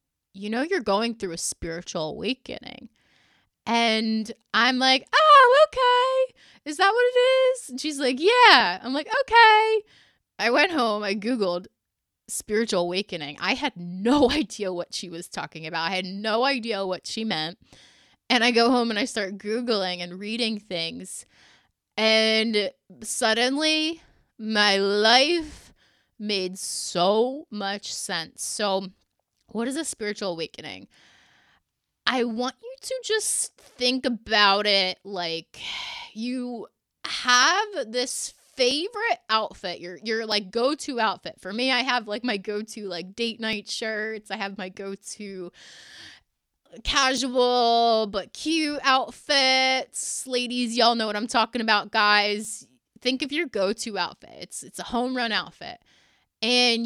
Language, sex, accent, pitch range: English, female, American, 200-260 Hz